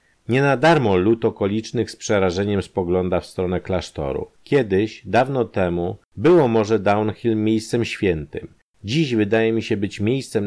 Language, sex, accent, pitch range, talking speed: Polish, male, native, 85-115 Hz, 145 wpm